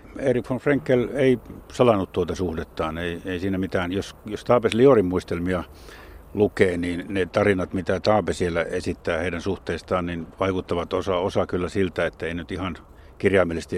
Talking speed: 160 wpm